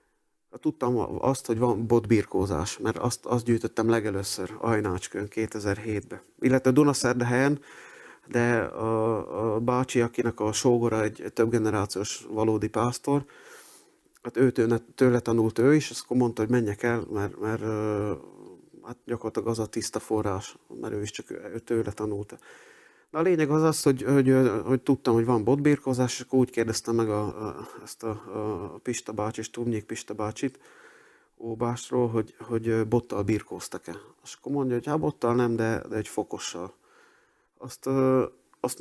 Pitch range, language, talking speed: 115-135 Hz, Hungarian, 150 wpm